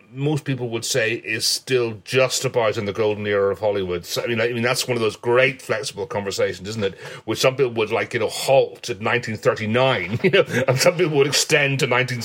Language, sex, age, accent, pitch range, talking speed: English, male, 30-49, British, 115-165 Hz, 235 wpm